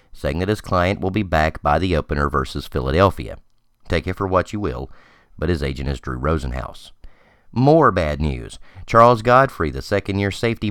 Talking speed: 185 wpm